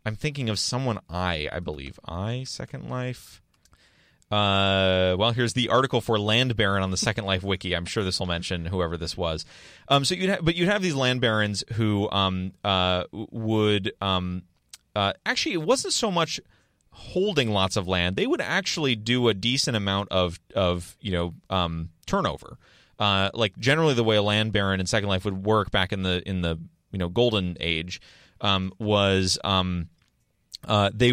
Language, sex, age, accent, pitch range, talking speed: English, male, 30-49, American, 95-115 Hz, 185 wpm